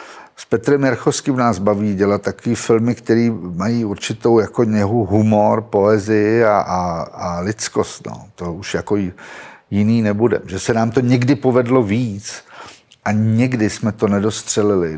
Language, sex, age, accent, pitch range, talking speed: Czech, male, 50-69, native, 105-125 Hz, 150 wpm